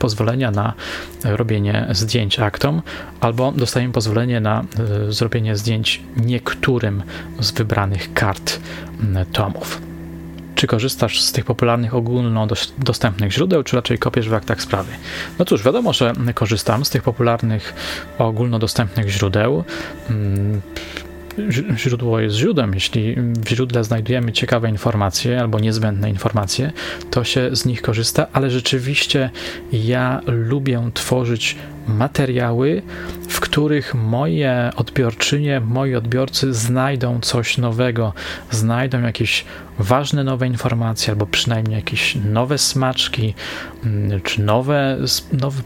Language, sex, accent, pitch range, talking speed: Polish, male, native, 110-135 Hz, 110 wpm